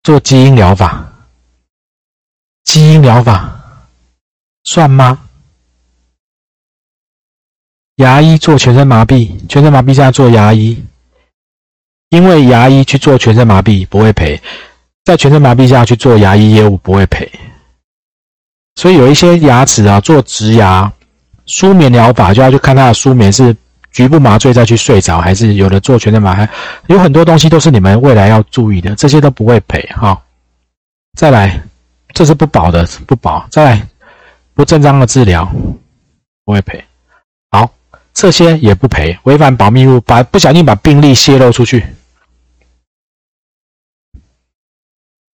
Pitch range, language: 95-135 Hz, Chinese